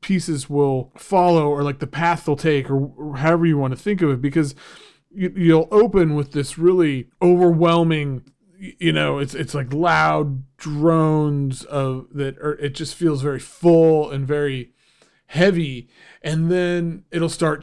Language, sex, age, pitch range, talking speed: English, male, 30-49, 140-170 Hz, 155 wpm